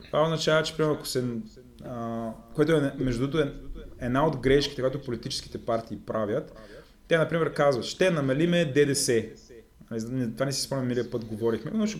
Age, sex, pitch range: 20-39, male, 120-155 Hz